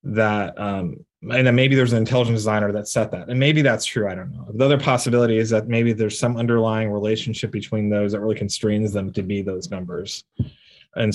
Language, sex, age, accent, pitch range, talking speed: English, male, 20-39, American, 100-120 Hz, 215 wpm